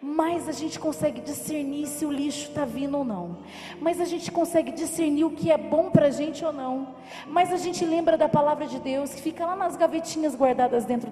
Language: Portuguese